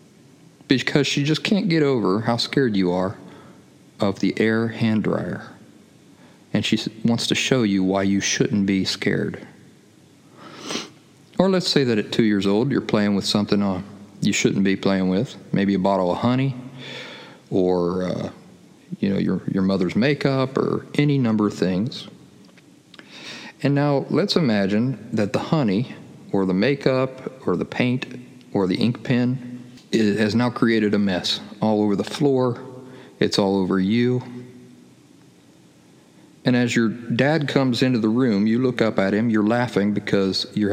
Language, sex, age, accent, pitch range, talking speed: English, male, 40-59, American, 100-135 Hz, 160 wpm